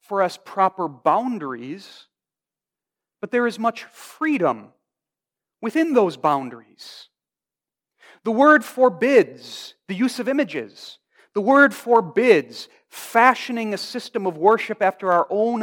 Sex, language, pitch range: male, English, 175-230 Hz